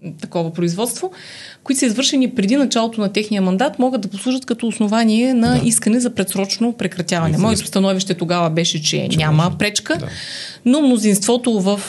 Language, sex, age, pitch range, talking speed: Bulgarian, female, 30-49, 185-240 Hz, 150 wpm